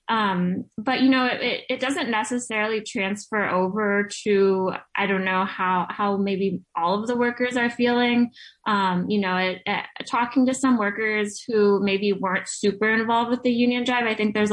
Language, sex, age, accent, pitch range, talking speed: English, female, 20-39, American, 185-215 Hz, 180 wpm